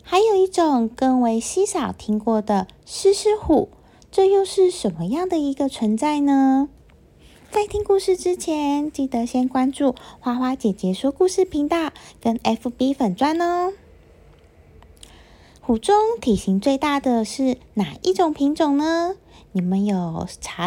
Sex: female